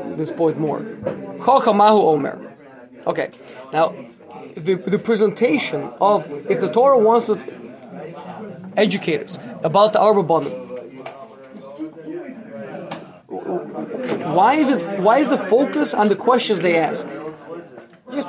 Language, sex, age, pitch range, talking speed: English, male, 20-39, 160-230 Hz, 110 wpm